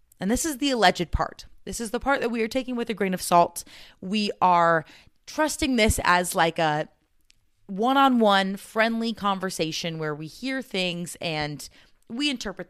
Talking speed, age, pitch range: 170 wpm, 30-49, 155-230 Hz